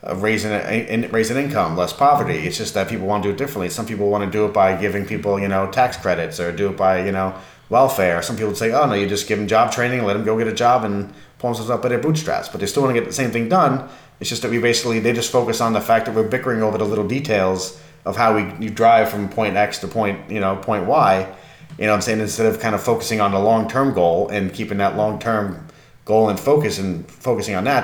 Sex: male